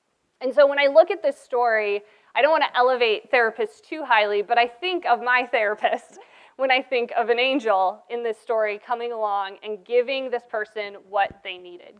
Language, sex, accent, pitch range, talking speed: English, female, American, 210-255 Hz, 200 wpm